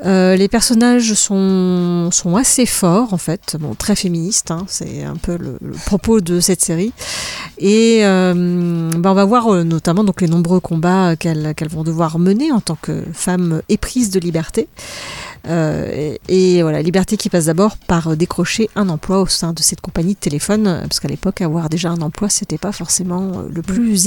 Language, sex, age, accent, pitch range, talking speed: French, female, 40-59, French, 175-210 Hz, 195 wpm